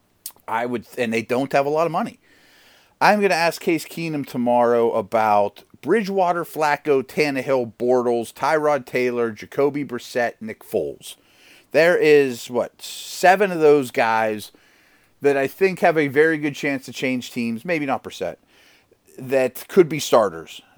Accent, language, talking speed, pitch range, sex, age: American, English, 155 wpm, 120-155 Hz, male, 40-59